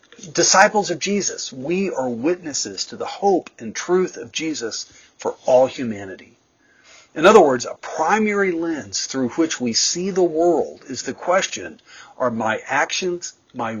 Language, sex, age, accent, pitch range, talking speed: English, male, 50-69, American, 125-180 Hz, 150 wpm